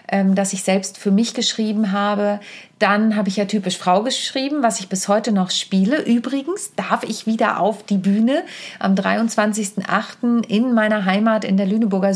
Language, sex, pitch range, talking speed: German, female, 190-230 Hz, 175 wpm